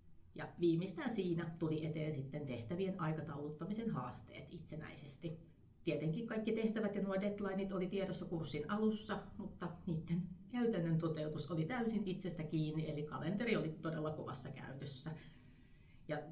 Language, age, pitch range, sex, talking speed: Finnish, 30-49, 155-195 Hz, female, 130 wpm